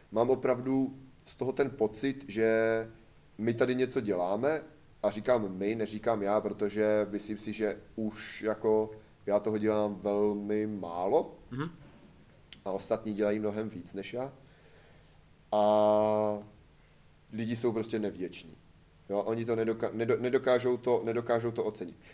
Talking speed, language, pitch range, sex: 125 wpm, Czech, 105-130 Hz, male